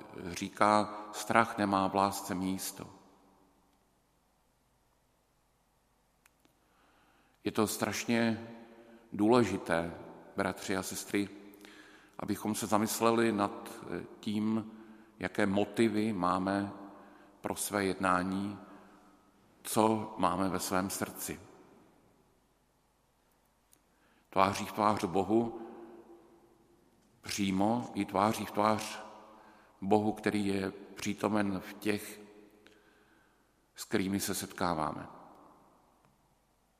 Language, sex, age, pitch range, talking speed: Slovak, male, 50-69, 95-105 Hz, 80 wpm